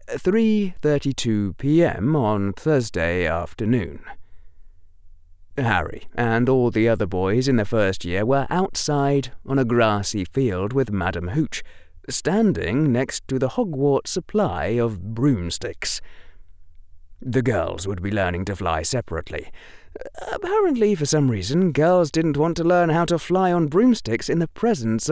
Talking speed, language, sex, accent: 135 wpm, English, male, British